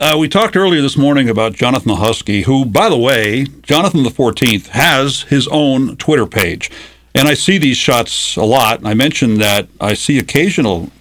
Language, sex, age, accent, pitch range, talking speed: English, male, 50-69, American, 115-170 Hz, 185 wpm